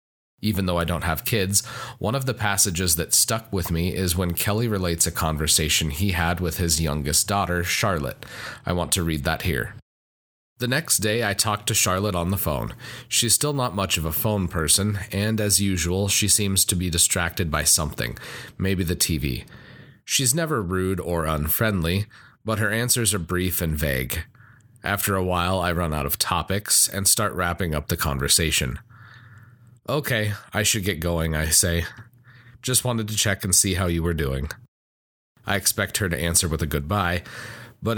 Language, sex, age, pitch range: English, male, 30-49, 85-110 Hz